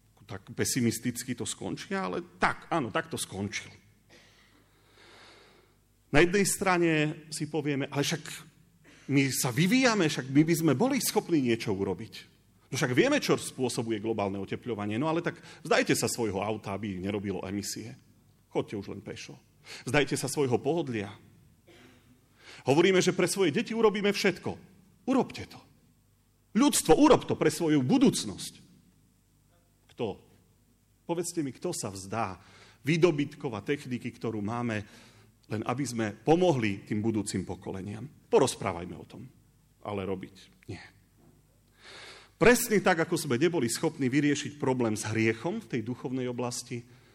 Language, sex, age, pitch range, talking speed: Slovak, male, 40-59, 110-160 Hz, 135 wpm